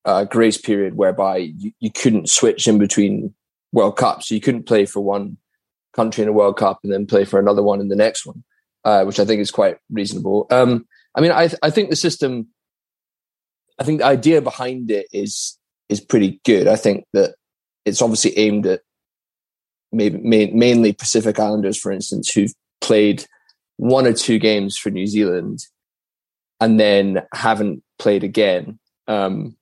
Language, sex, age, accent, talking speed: English, male, 20-39, British, 175 wpm